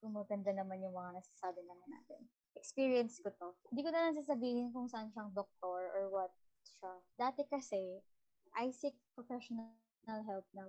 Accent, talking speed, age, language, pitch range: native, 155 wpm, 20-39, Filipino, 195-235 Hz